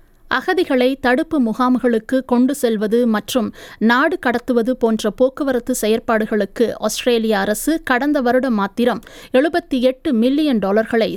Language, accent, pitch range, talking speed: Tamil, native, 225-270 Hz, 95 wpm